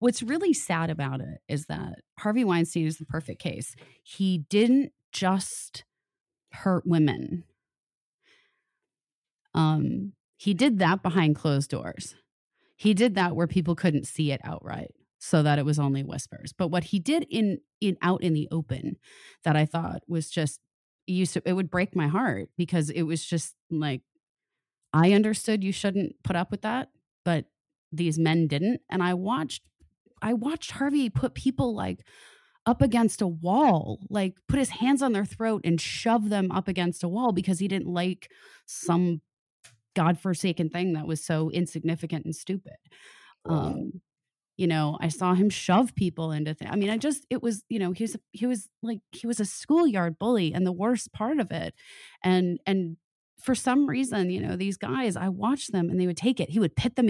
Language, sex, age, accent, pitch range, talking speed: English, female, 30-49, American, 160-215 Hz, 185 wpm